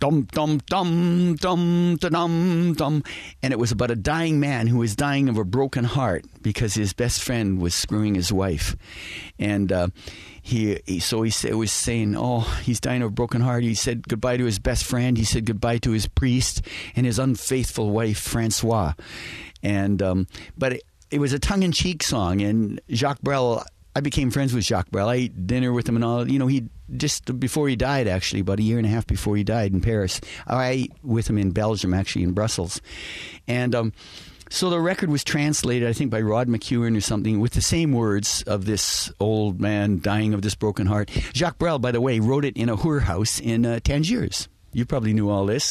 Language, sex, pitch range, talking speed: English, male, 105-130 Hz, 205 wpm